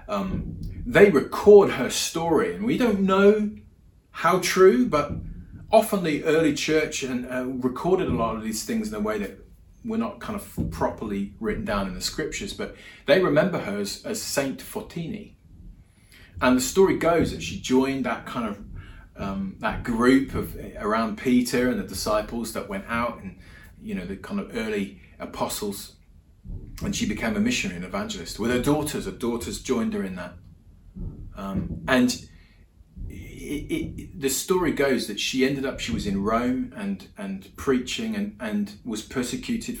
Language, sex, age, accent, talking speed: English, male, 30-49, British, 175 wpm